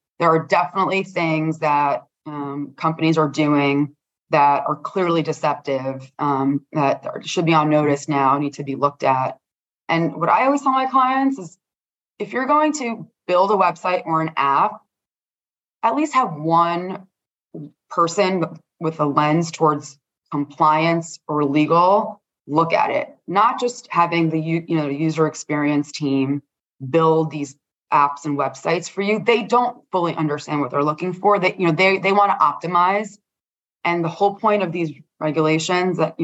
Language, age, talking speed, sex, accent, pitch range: English, 20-39, 160 wpm, female, American, 150-195 Hz